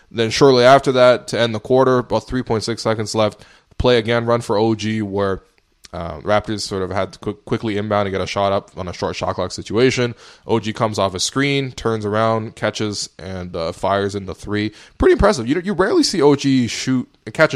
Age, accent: 20-39, American